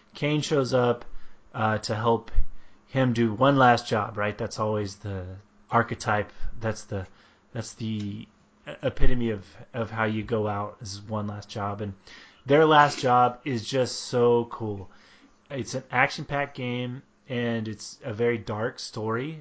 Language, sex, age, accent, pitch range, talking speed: English, male, 30-49, American, 105-125 Hz, 150 wpm